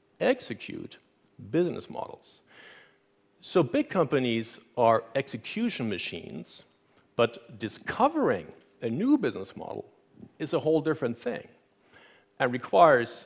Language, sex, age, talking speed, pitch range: Italian, male, 50-69, 100 wpm, 110-150 Hz